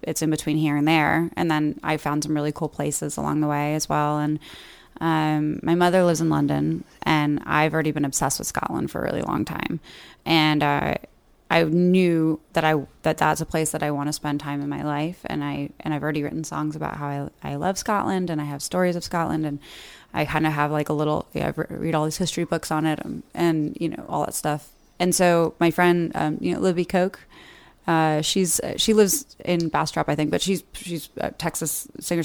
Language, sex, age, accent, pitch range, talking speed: English, female, 20-39, American, 150-170 Hz, 230 wpm